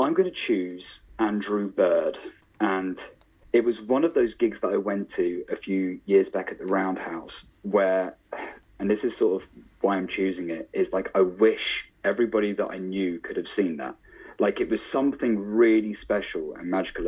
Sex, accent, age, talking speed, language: male, British, 30-49, 190 wpm, English